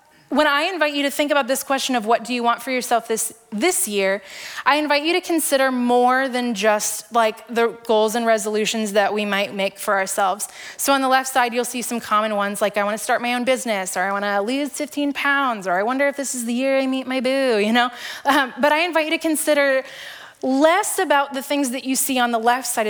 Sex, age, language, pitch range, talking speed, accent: female, 20-39, English, 205-260 Hz, 245 wpm, American